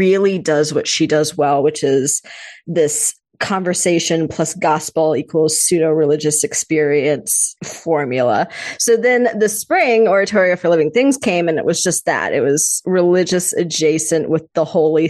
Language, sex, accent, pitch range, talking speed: English, female, American, 155-195 Hz, 145 wpm